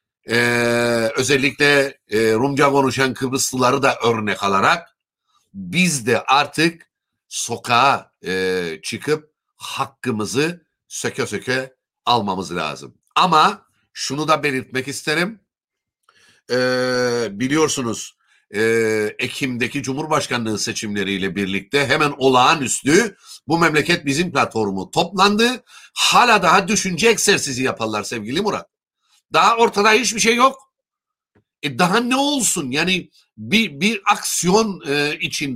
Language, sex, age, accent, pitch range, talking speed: Turkish, male, 60-79, native, 130-210 Hz, 95 wpm